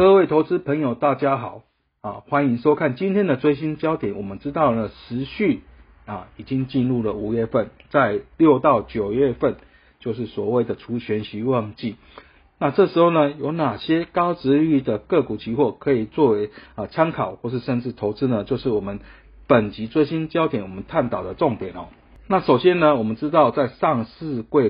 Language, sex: Chinese, male